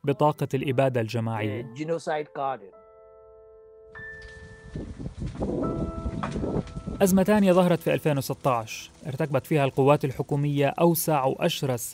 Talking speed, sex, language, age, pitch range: 70 wpm, male, Arabic, 30-49, 130-155 Hz